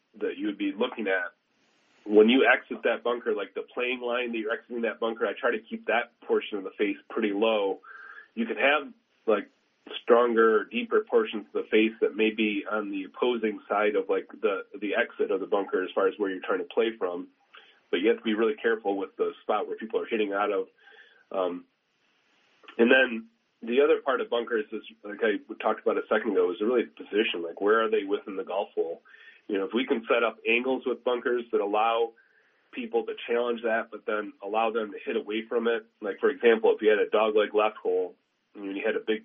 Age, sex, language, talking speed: 30-49, male, English, 225 wpm